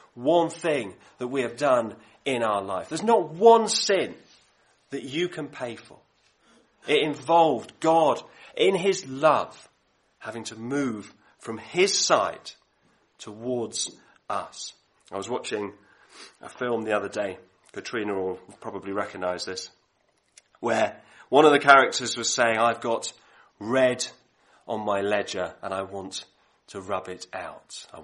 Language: English